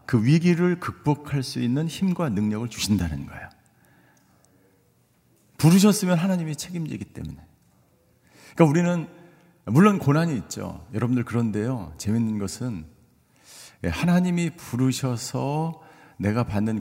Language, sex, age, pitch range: Korean, male, 50-69, 115-150 Hz